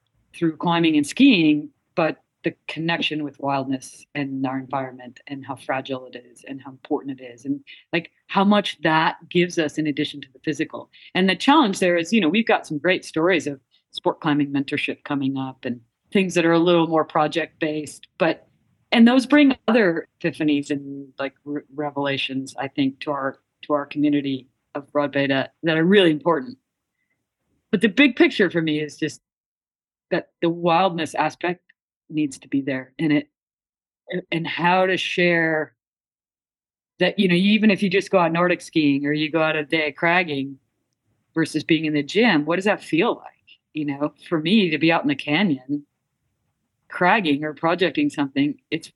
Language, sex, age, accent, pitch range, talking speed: English, female, 40-59, American, 140-180 Hz, 185 wpm